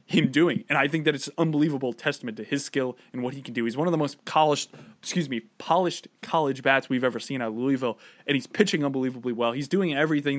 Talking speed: 245 wpm